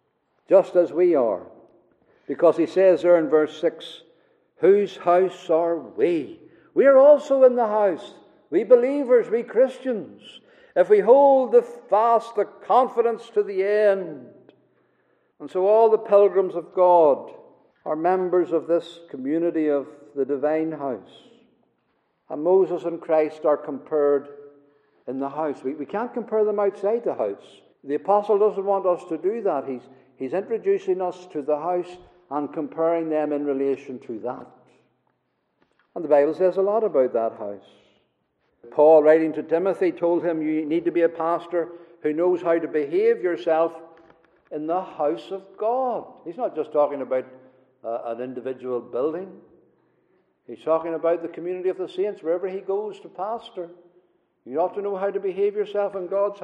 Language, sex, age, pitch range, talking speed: English, male, 60-79, 155-205 Hz, 165 wpm